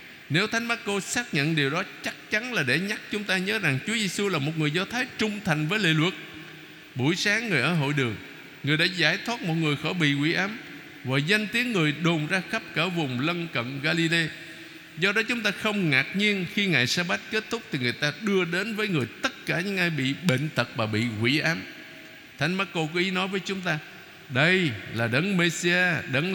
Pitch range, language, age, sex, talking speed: 145-185 Hz, Vietnamese, 60-79, male, 230 wpm